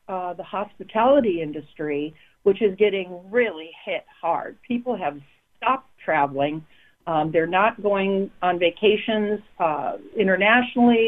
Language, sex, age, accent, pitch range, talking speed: English, female, 50-69, American, 175-235 Hz, 120 wpm